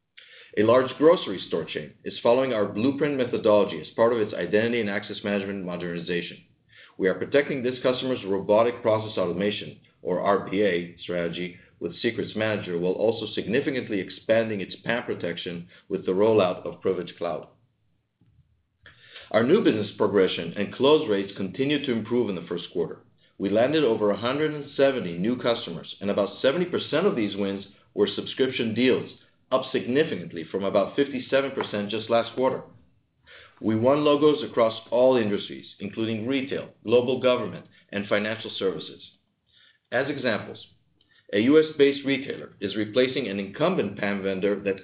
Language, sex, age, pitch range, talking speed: English, male, 40-59, 95-125 Hz, 145 wpm